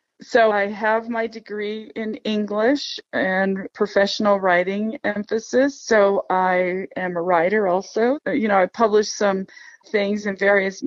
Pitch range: 190-235 Hz